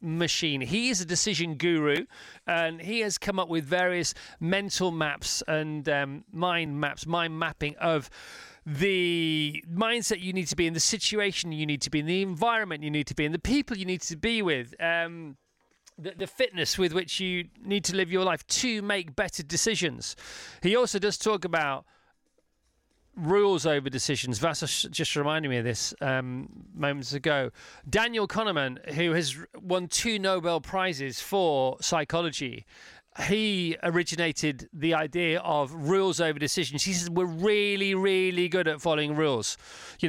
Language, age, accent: English, 30-49, British